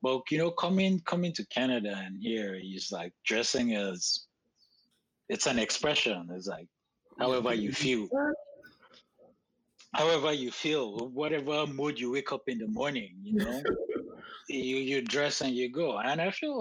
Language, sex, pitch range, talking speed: English, male, 105-150 Hz, 160 wpm